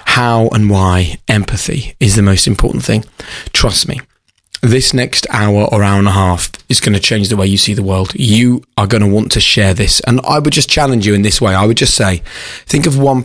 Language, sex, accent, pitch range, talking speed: English, male, British, 100-115 Hz, 240 wpm